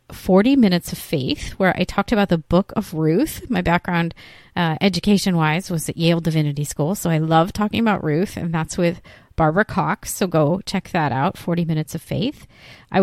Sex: female